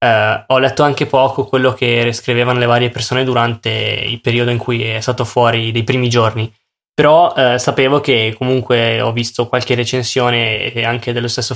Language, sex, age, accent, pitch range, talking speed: Italian, male, 10-29, native, 120-135 Hz, 175 wpm